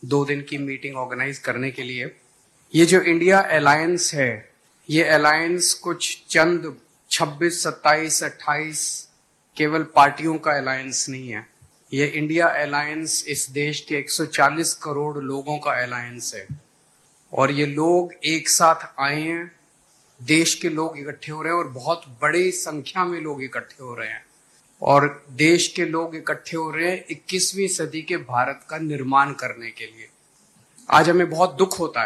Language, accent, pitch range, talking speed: Hindi, native, 145-170 Hz, 155 wpm